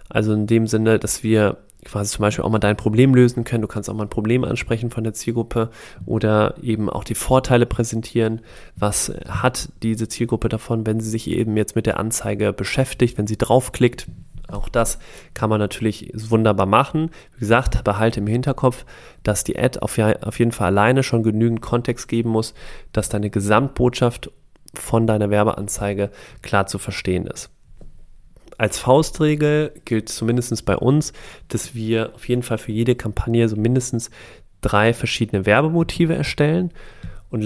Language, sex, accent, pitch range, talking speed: German, male, German, 105-120 Hz, 165 wpm